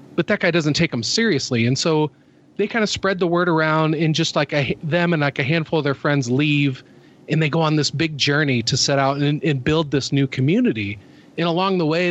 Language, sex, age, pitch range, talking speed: English, male, 30-49, 140-175 Hz, 245 wpm